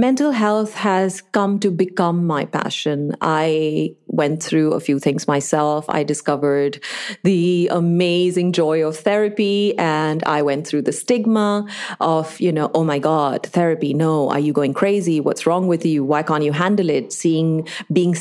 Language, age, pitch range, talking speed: English, 30-49, 150-180 Hz, 170 wpm